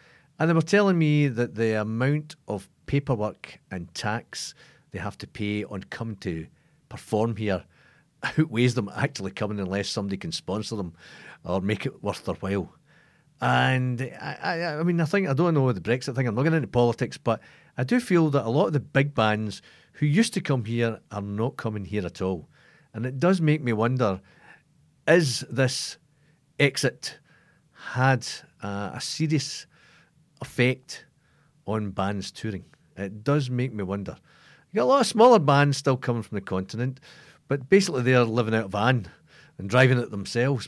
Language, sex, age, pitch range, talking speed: English, male, 50-69, 105-150 Hz, 180 wpm